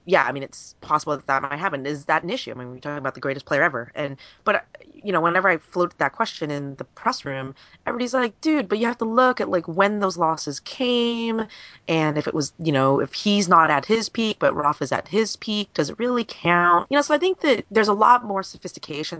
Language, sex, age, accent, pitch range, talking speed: English, female, 20-39, American, 135-185 Hz, 255 wpm